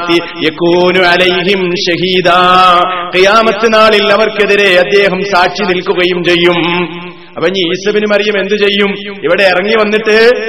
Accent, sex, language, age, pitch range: native, male, Malayalam, 30-49, 180-215 Hz